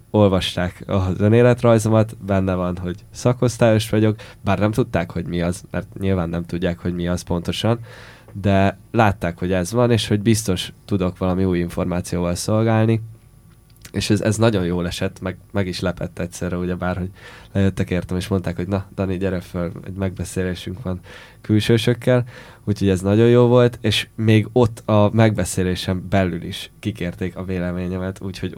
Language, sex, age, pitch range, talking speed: Hungarian, male, 10-29, 90-110 Hz, 160 wpm